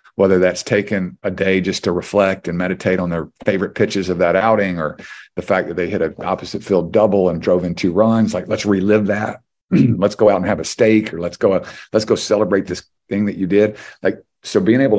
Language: English